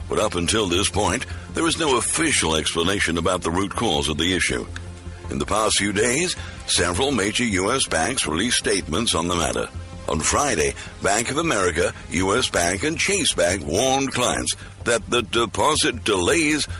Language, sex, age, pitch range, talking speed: English, male, 60-79, 85-105 Hz, 170 wpm